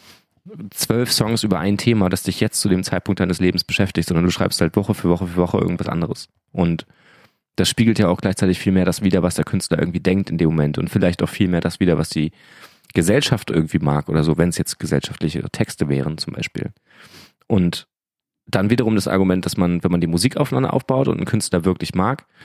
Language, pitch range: German, 90-110 Hz